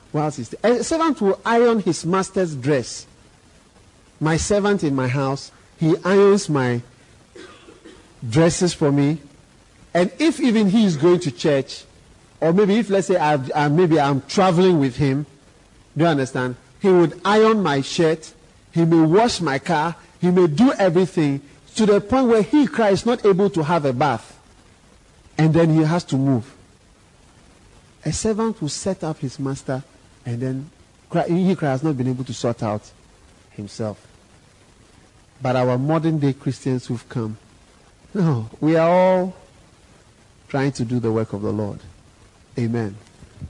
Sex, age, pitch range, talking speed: male, 50-69, 120-185 Hz, 160 wpm